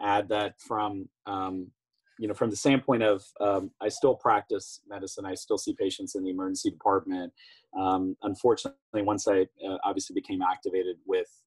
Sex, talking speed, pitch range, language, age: male, 165 wpm, 90-115 Hz, English, 30-49